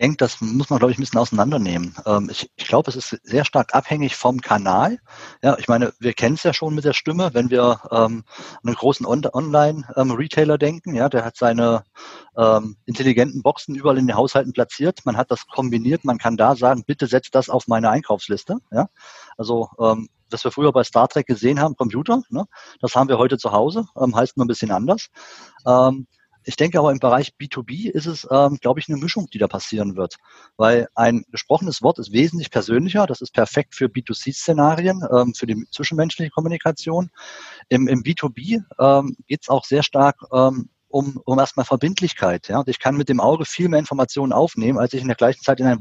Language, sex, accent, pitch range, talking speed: German, male, German, 115-145 Hz, 190 wpm